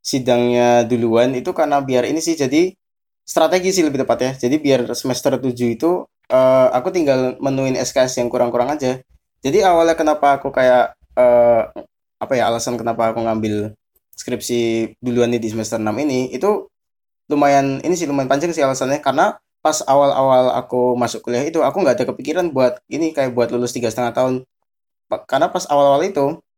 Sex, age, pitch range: male, 20-39, 115-145 Hz